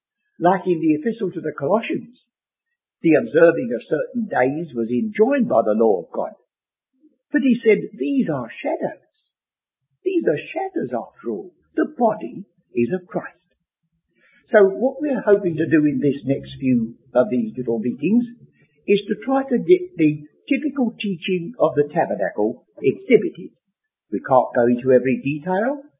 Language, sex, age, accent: English, male, 60-79, British